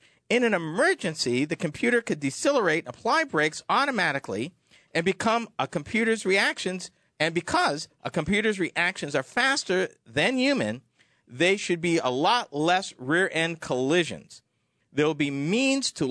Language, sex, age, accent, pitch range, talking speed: English, male, 50-69, American, 155-225 Hz, 140 wpm